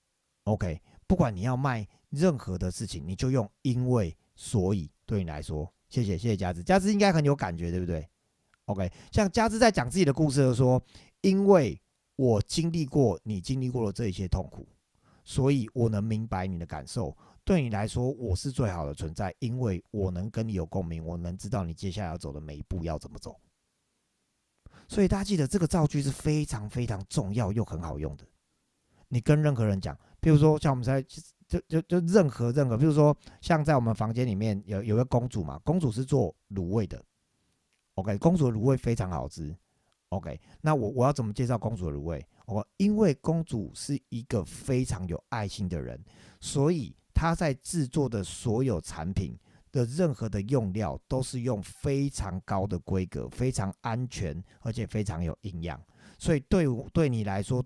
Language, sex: Chinese, male